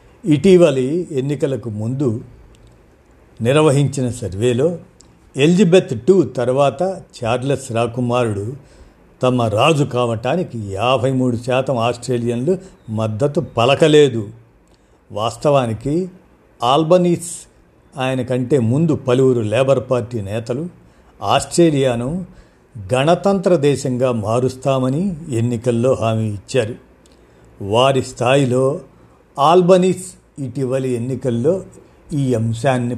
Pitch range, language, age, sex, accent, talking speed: 115-150 Hz, Telugu, 50-69, male, native, 75 wpm